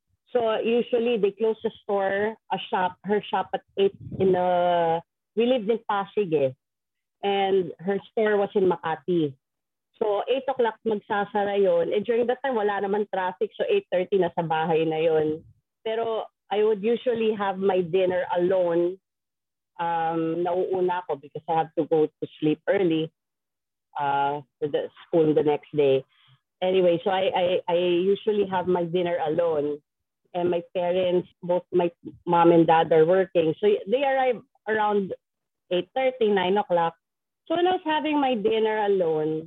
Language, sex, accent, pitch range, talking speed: English, female, Filipino, 170-235 Hz, 165 wpm